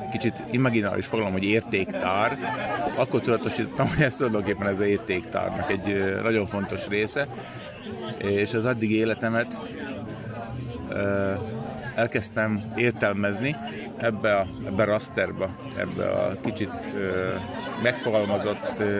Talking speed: 100 wpm